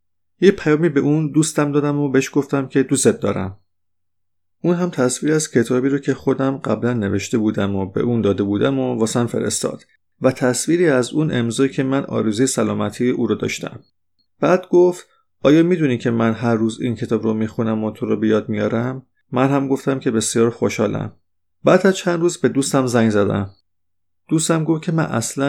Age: 30-49